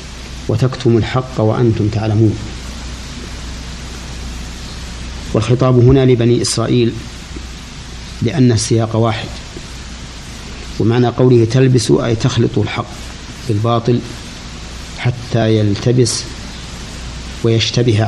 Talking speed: 70 wpm